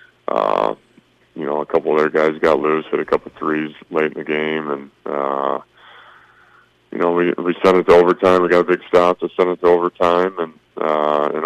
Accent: American